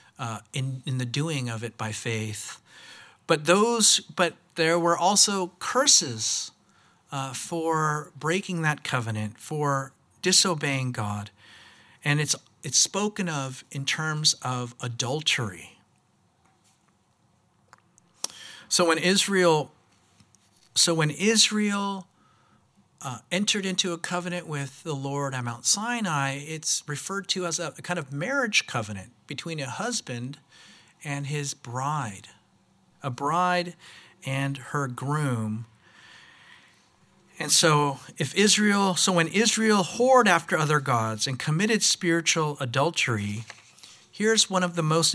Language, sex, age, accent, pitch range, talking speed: English, male, 50-69, American, 130-175 Hz, 120 wpm